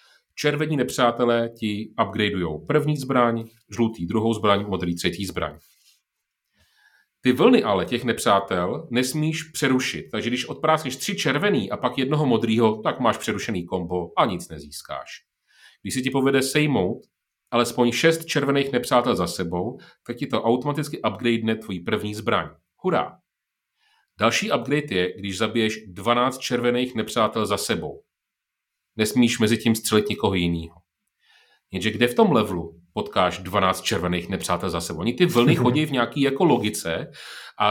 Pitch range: 105-140 Hz